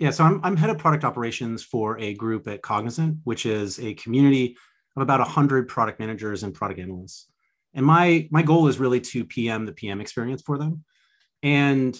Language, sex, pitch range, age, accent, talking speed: English, male, 110-145 Hz, 30-49, American, 195 wpm